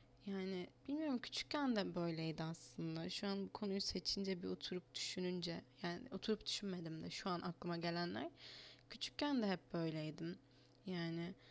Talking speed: 140 wpm